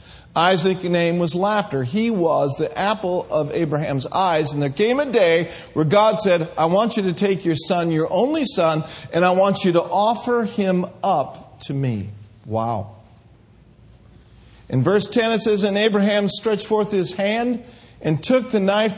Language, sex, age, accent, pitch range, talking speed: English, male, 50-69, American, 160-230 Hz, 175 wpm